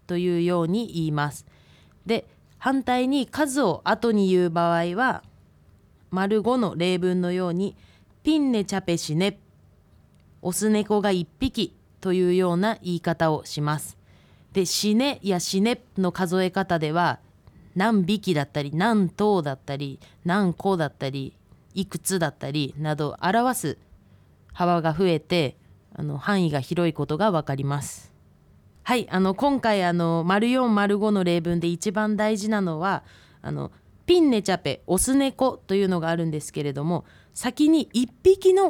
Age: 20-39